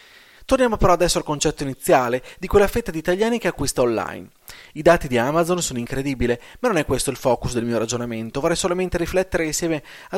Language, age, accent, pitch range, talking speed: Italian, 30-49, native, 130-185 Hz, 200 wpm